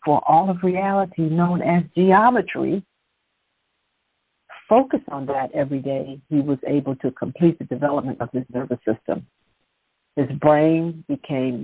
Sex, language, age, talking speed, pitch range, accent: female, English, 60-79, 135 wpm, 150-195 Hz, American